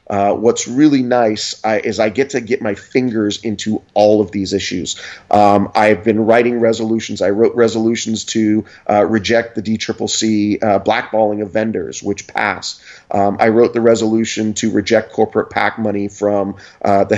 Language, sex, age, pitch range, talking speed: English, male, 30-49, 105-120 Hz, 170 wpm